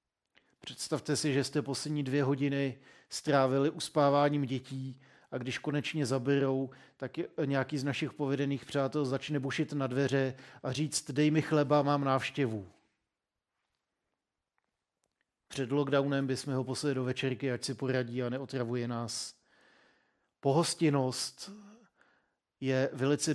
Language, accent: Czech, native